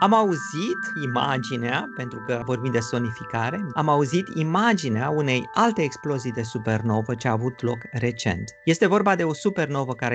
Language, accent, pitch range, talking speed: Romanian, native, 135-180 Hz, 160 wpm